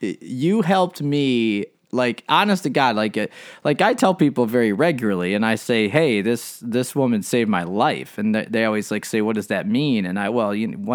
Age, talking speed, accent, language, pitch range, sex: 30-49, 210 wpm, American, English, 105-145 Hz, male